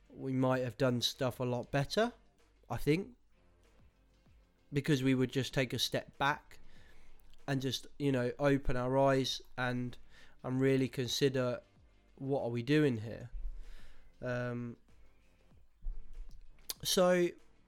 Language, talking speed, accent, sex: English, 120 wpm, British, male